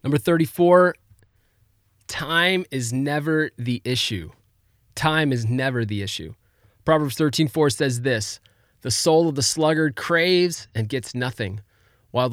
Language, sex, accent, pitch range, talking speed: English, male, American, 110-150 Hz, 125 wpm